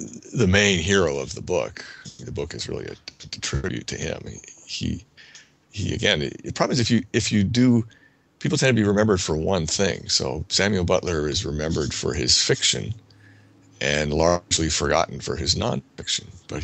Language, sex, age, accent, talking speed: English, male, 50-69, American, 185 wpm